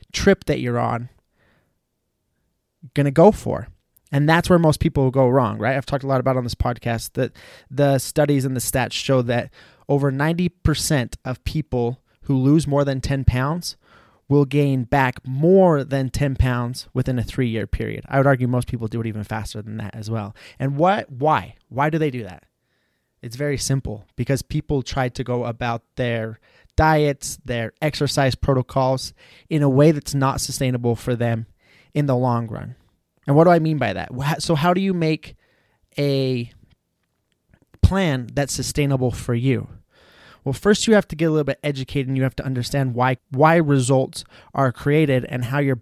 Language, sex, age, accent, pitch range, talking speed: English, male, 20-39, American, 120-145 Hz, 185 wpm